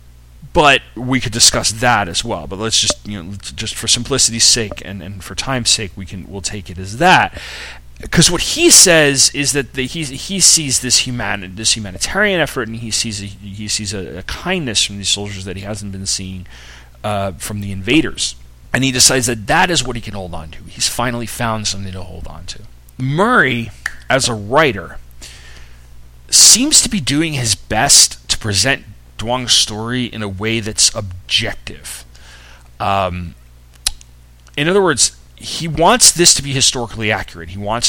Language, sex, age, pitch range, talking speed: English, male, 30-49, 90-130 Hz, 180 wpm